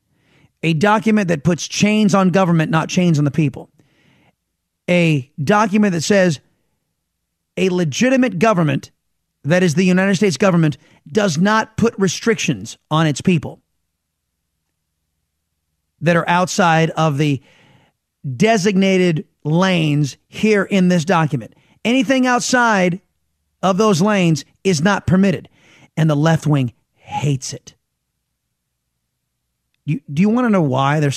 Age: 30-49